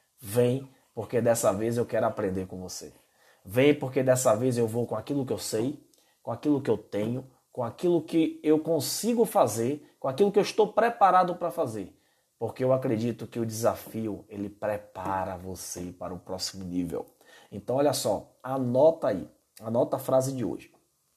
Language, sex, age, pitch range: Portuguese, male, 20-39, 110-150 Hz